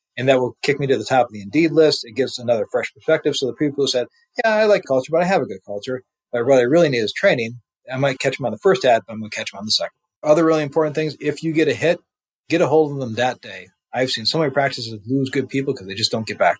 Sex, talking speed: male, 305 wpm